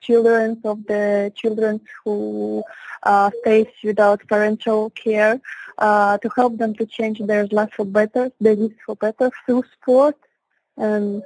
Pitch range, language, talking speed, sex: 205-225 Hz, English, 145 wpm, female